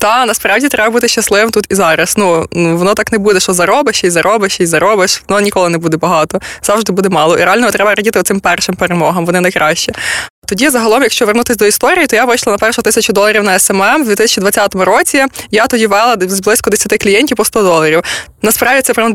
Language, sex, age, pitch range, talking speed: Ukrainian, female, 20-39, 195-235 Hz, 215 wpm